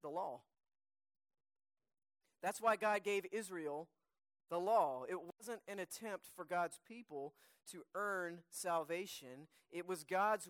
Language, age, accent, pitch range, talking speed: English, 40-59, American, 165-220 Hz, 125 wpm